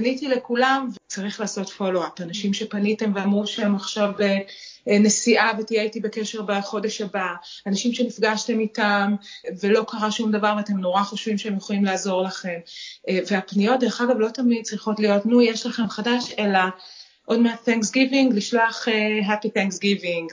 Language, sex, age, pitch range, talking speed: Hebrew, female, 30-49, 195-230 Hz, 145 wpm